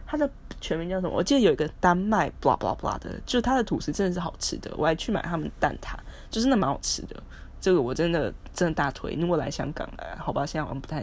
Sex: female